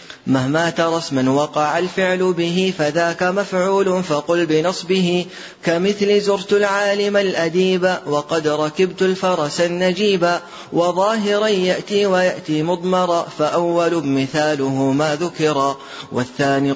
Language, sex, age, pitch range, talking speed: Arabic, male, 30-49, 145-185 Hz, 95 wpm